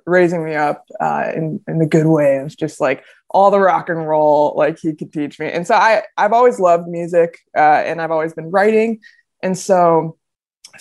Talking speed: 210 wpm